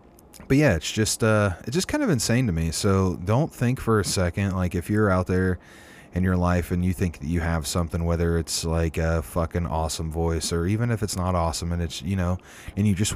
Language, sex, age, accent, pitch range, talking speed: English, male, 30-49, American, 85-100 Hz, 240 wpm